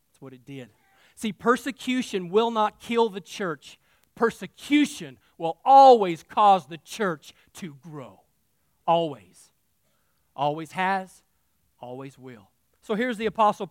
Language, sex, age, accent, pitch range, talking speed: English, male, 40-59, American, 170-225 Hz, 120 wpm